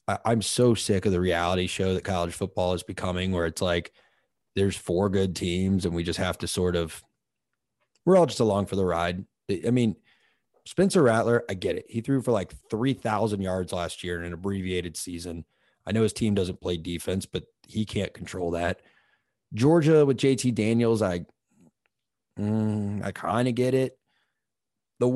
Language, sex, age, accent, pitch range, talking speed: English, male, 30-49, American, 90-120 Hz, 180 wpm